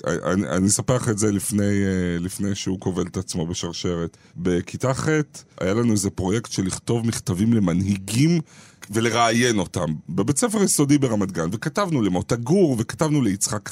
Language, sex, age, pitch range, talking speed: Hebrew, male, 40-59, 95-145 Hz, 150 wpm